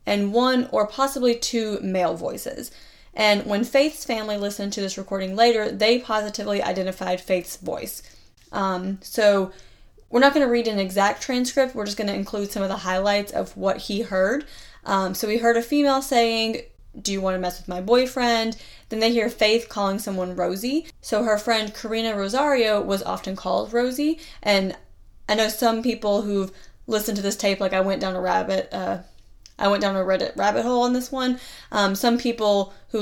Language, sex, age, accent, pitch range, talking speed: English, female, 10-29, American, 195-240 Hz, 195 wpm